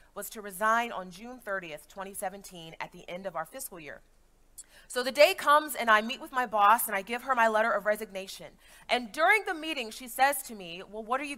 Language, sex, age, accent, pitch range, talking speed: Czech, female, 30-49, American, 205-270 Hz, 230 wpm